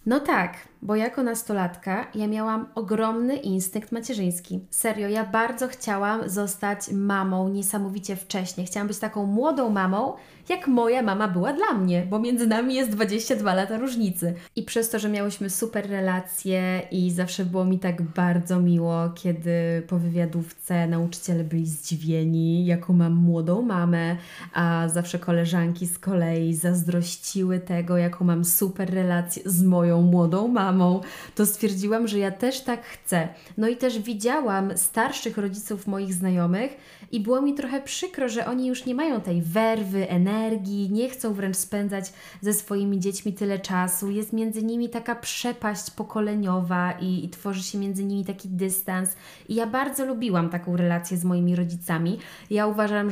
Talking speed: 155 wpm